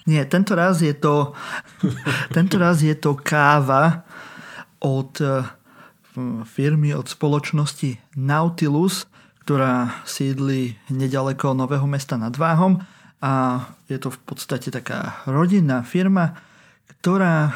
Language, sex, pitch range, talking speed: Slovak, male, 135-155 Hz, 95 wpm